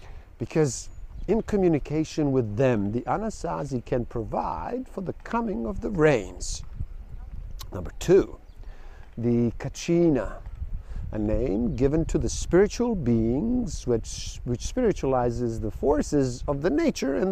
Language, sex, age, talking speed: English, male, 50-69, 120 wpm